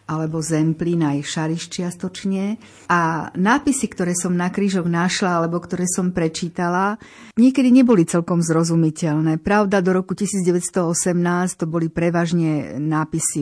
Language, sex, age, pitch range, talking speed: Slovak, female, 50-69, 165-195 Hz, 125 wpm